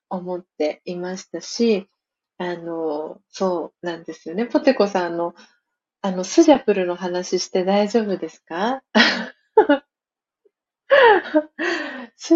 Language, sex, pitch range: Japanese, female, 185-265 Hz